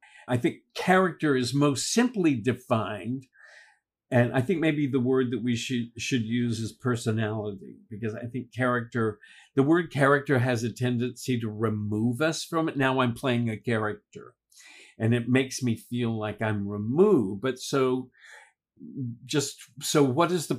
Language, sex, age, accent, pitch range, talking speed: English, male, 50-69, American, 115-145 Hz, 160 wpm